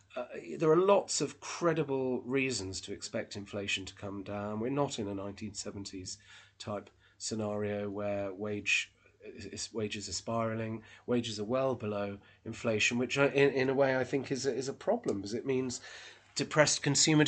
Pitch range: 110-140 Hz